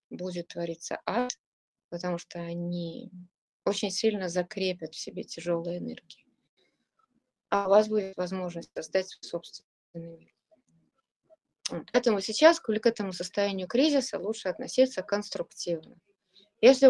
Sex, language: female, Russian